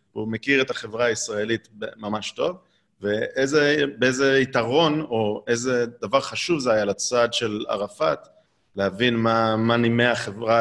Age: 30-49